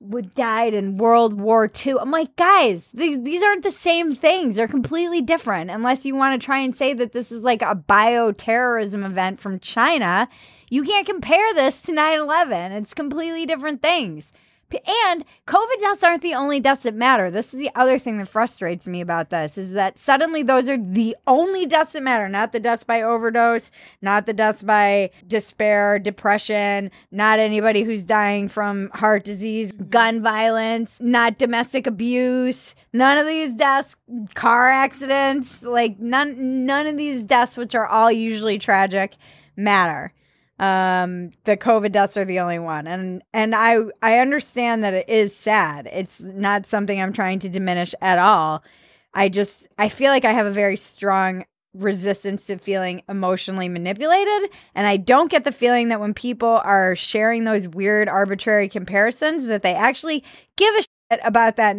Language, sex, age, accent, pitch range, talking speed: English, female, 10-29, American, 200-265 Hz, 170 wpm